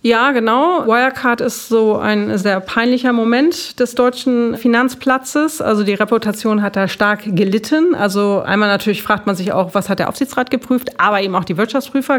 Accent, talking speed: German, 175 wpm